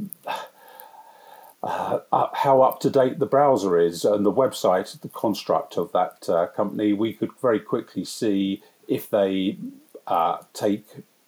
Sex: male